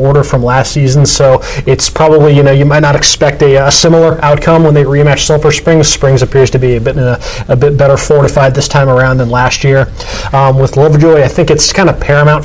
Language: English